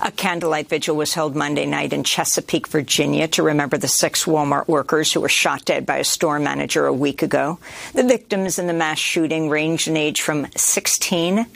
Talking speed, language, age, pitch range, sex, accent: 195 wpm, English, 50-69, 145-190 Hz, female, American